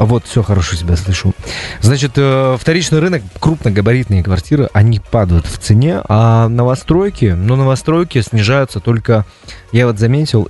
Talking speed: 130 wpm